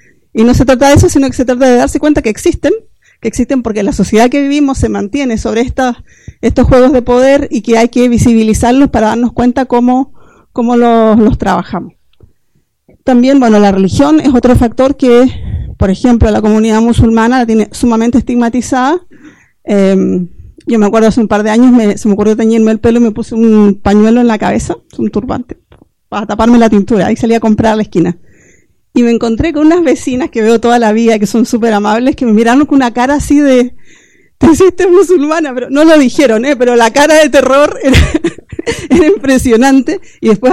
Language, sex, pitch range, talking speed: English, female, 225-280 Hz, 205 wpm